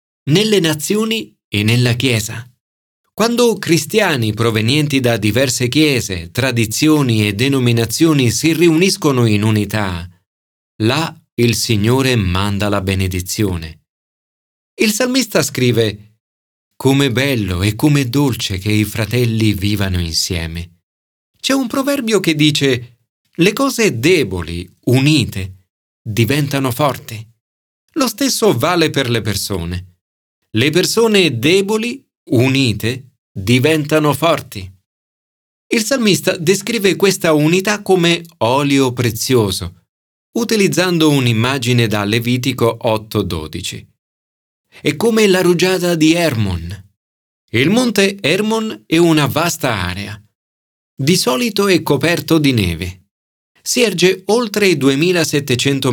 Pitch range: 105-165 Hz